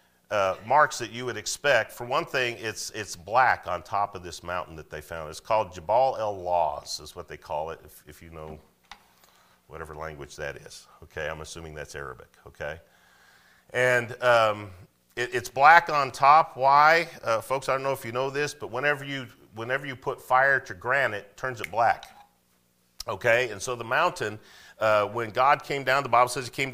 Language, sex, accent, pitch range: English, male, American, 90-135 Hz